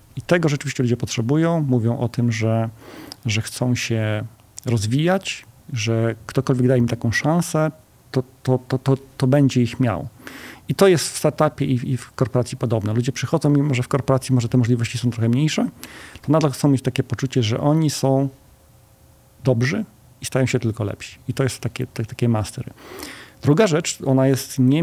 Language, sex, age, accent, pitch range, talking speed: Polish, male, 40-59, native, 120-140 Hz, 175 wpm